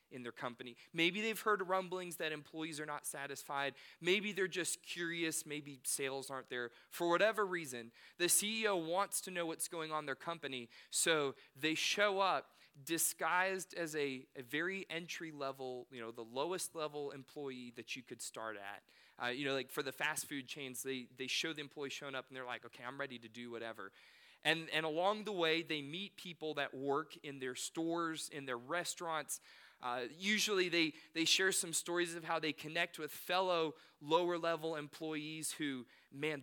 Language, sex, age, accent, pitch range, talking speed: English, male, 30-49, American, 135-165 Hz, 185 wpm